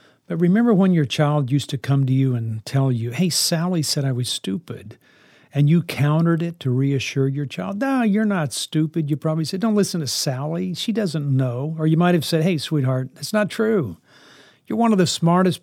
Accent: American